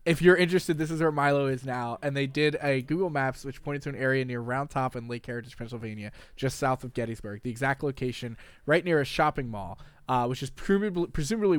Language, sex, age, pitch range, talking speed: English, male, 20-39, 125-160 Hz, 225 wpm